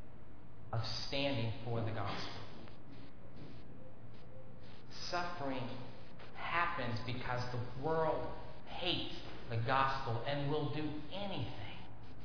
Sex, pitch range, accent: male, 105-145 Hz, American